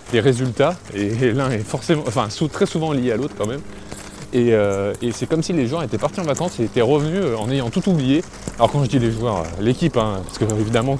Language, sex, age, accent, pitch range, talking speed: French, male, 20-39, French, 105-130 Hz, 245 wpm